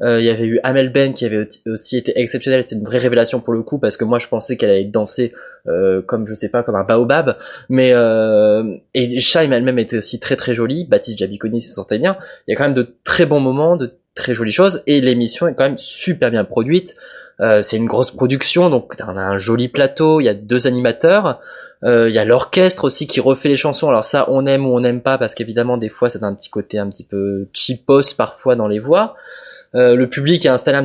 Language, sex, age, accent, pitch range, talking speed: French, male, 20-39, French, 115-155 Hz, 245 wpm